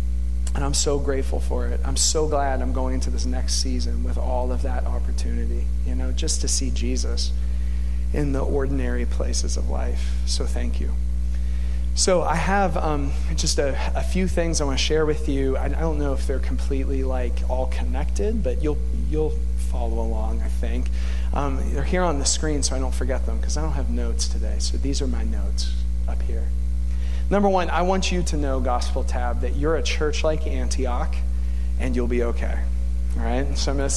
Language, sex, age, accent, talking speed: English, male, 40-59, American, 205 wpm